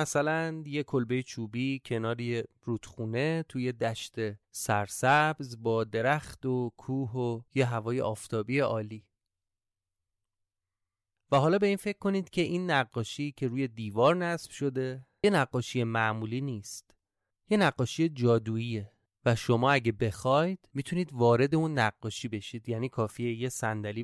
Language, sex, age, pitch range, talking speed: Persian, male, 30-49, 110-145 Hz, 130 wpm